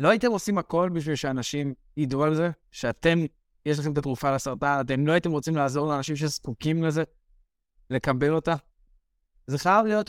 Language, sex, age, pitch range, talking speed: Hebrew, male, 20-39, 135-170 Hz, 165 wpm